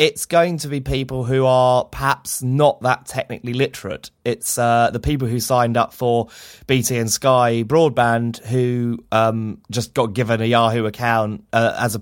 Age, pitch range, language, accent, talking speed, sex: 20-39, 105-135 Hz, English, British, 175 wpm, male